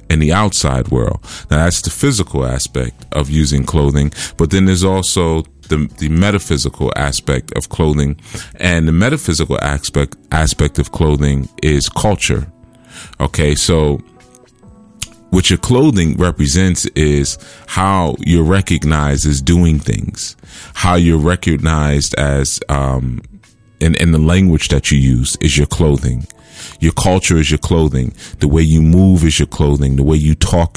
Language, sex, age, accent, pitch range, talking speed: English, male, 30-49, American, 70-90 Hz, 145 wpm